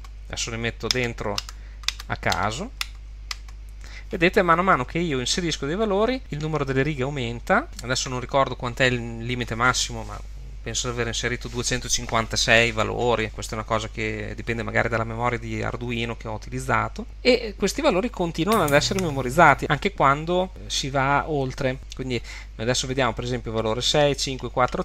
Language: Italian